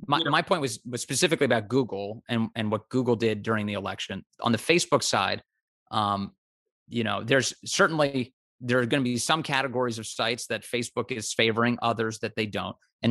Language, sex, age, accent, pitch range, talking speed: English, male, 30-49, American, 110-135 Hz, 195 wpm